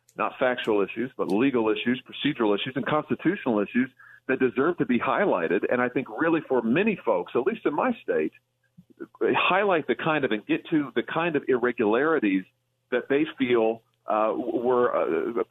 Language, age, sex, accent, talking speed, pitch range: English, 40-59, male, American, 175 wpm, 110-145 Hz